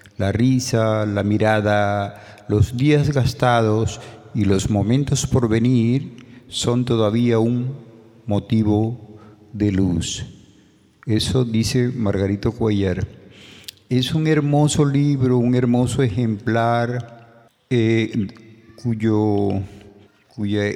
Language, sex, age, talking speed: Spanish, male, 50-69, 95 wpm